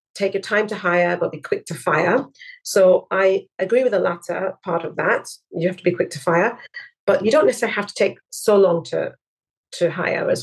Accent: British